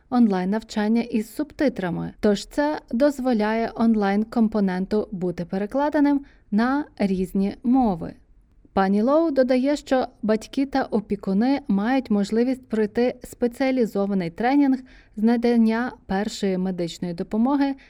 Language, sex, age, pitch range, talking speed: Ukrainian, female, 20-39, 200-260 Hz, 100 wpm